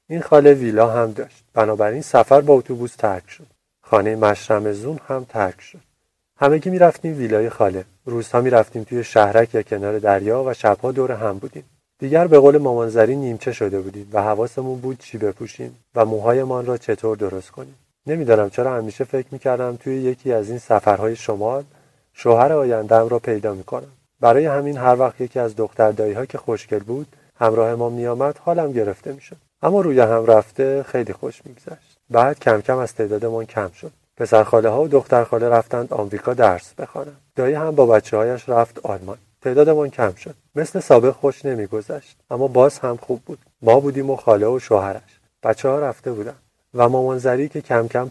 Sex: male